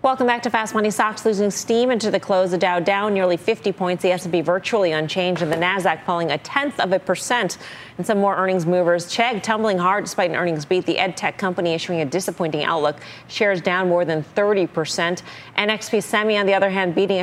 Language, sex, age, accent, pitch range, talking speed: English, female, 40-59, American, 165-210 Hz, 210 wpm